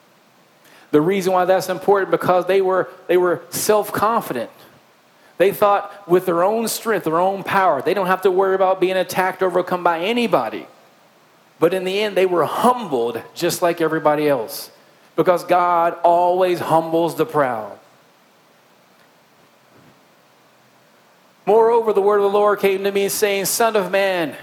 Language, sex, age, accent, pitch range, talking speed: English, male, 40-59, American, 185-230 Hz, 150 wpm